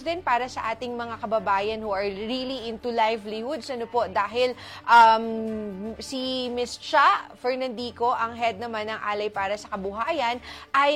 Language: Filipino